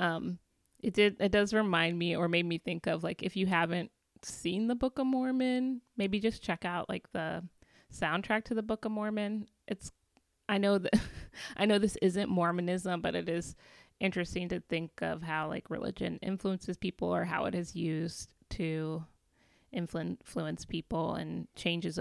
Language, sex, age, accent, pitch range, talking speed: English, female, 20-39, American, 165-215 Hz, 175 wpm